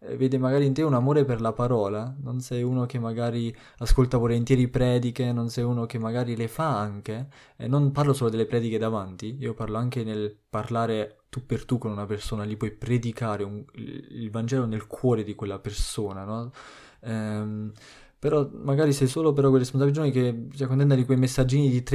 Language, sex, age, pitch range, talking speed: Italian, male, 20-39, 115-130 Hz, 195 wpm